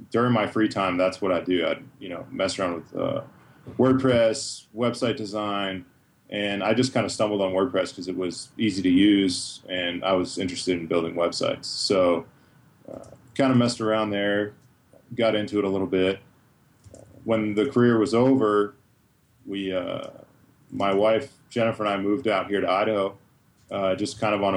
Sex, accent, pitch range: male, American, 95-120 Hz